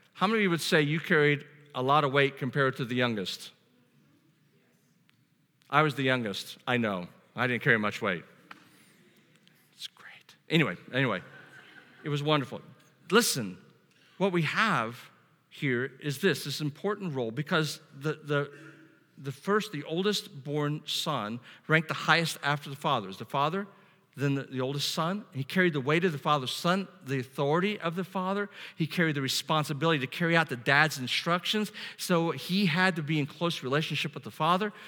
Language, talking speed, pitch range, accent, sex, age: English, 170 wpm, 150-195 Hz, American, male, 50-69